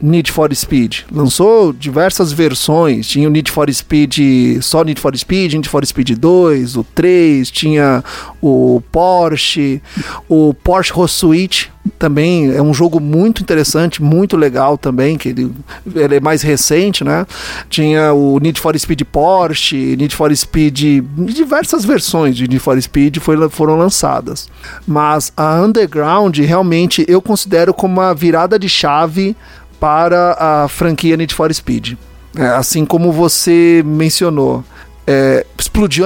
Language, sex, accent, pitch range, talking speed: Portuguese, male, Brazilian, 145-180 Hz, 140 wpm